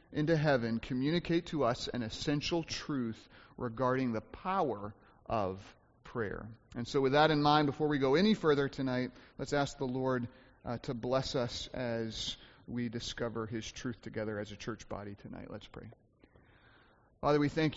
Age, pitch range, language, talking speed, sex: 30-49, 115-140 Hz, English, 165 wpm, male